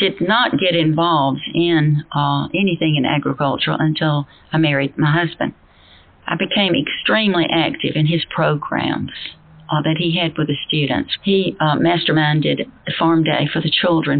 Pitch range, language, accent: 155-175 Hz, English, American